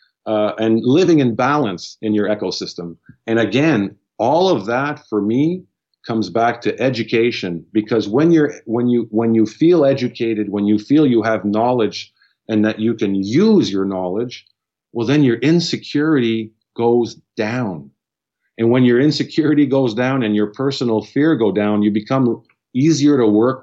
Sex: male